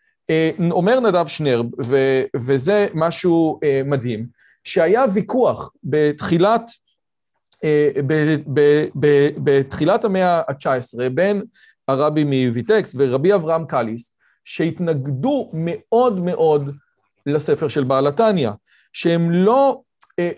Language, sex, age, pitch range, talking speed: Hebrew, male, 40-59, 140-195 Hz, 100 wpm